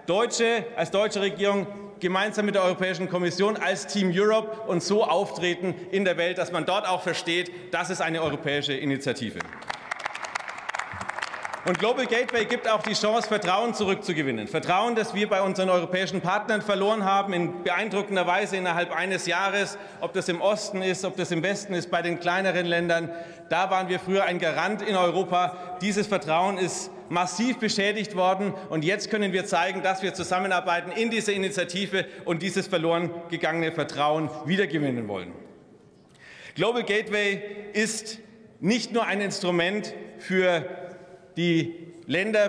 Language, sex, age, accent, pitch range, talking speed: German, male, 40-59, German, 175-200 Hz, 155 wpm